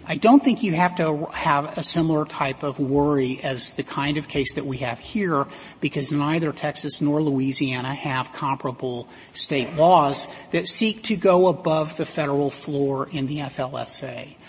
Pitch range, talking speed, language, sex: 145-195 Hz, 170 wpm, English, male